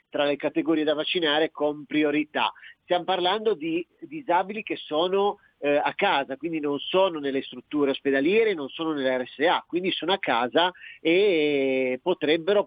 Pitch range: 140-185 Hz